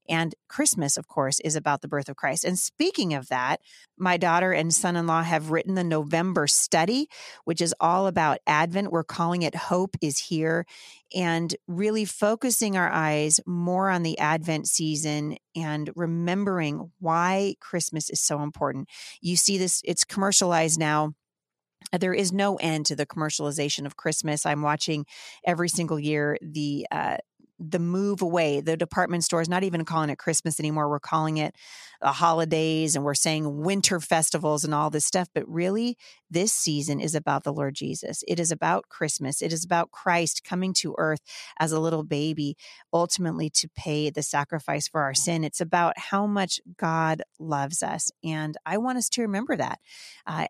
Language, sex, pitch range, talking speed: English, female, 155-180 Hz, 175 wpm